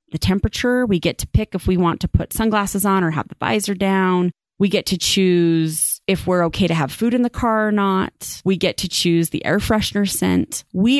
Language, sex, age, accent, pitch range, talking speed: English, female, 30-49, American, 170-220 Hz, 230 wpm